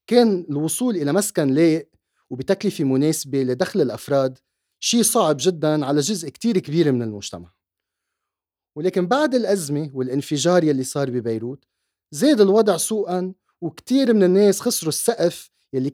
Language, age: Arabic, 30-49